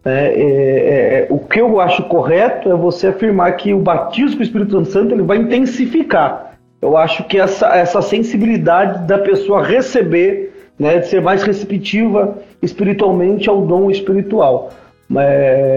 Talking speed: 150 wpm